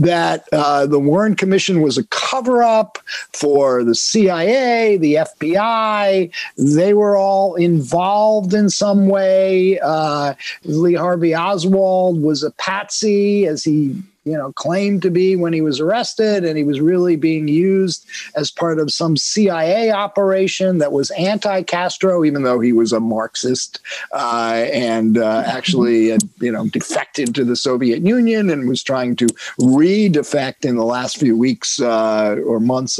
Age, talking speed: 50-69, 155 wpm